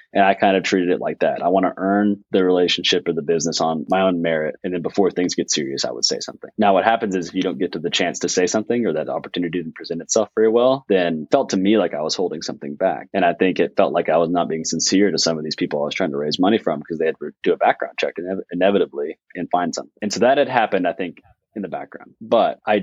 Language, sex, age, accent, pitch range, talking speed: English, male, 20-39, American, 90-110 Hz, 290 wpm